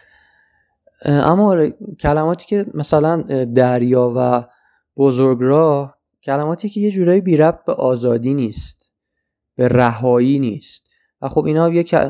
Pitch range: 120-155 Hz